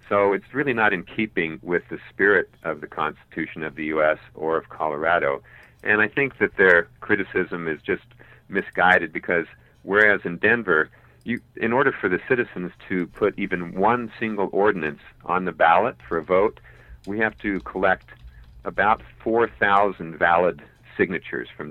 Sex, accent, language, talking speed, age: male, American, English, 160 wpm, 50-69